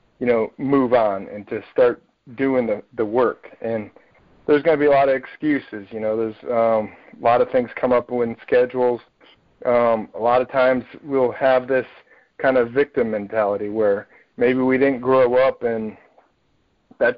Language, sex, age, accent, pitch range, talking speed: English, male, 40-59, American, 120-135 Hz, 180 wpm